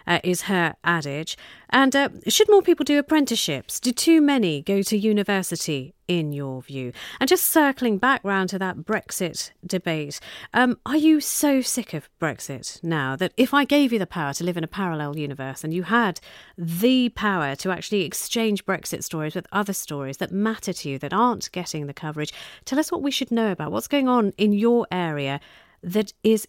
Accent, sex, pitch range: British, female, 160-225 Hz